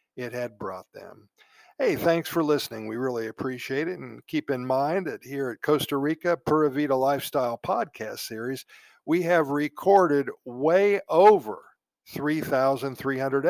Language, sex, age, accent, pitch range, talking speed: Italian, male, 50-69, American, 125-165 Hz, 140 wpm